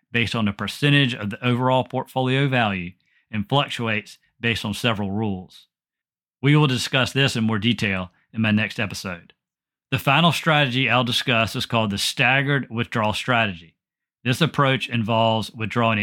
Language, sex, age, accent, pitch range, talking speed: English, male, 40-59, American, 105-130 Hz, 155 wpm